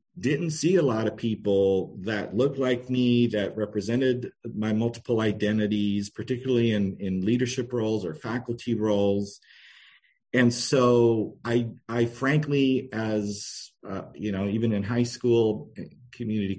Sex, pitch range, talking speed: male, 100-120 Hz, 135 wpm